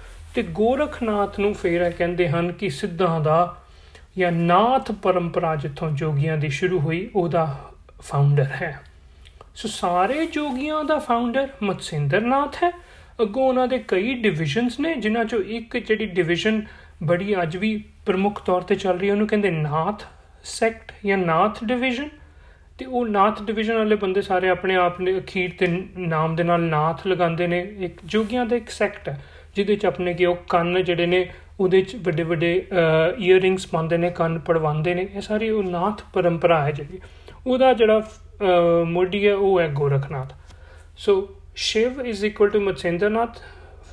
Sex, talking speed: male, 150 wpm